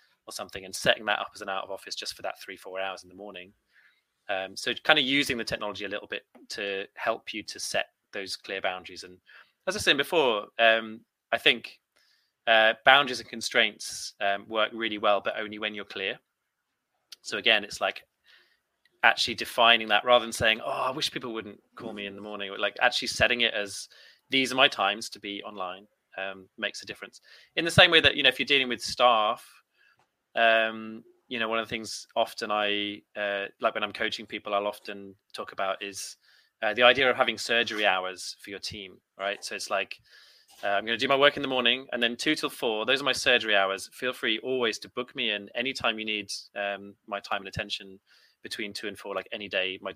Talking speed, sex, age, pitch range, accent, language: 220 wpm, male, 20-39, 100-120 Hz, British, English